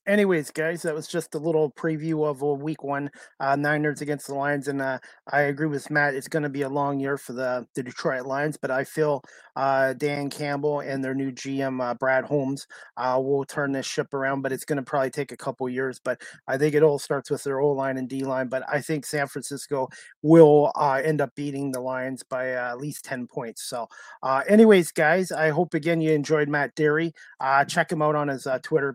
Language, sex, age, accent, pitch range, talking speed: English, male, 30-49, American, 135-160 Hz, 230 wpm